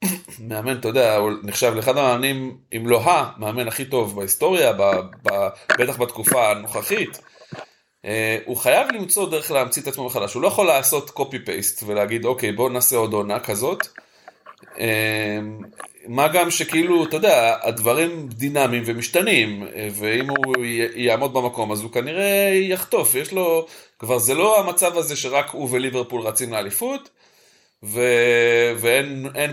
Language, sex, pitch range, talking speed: Hebrew, male, 105-140 Hz, 135 wpm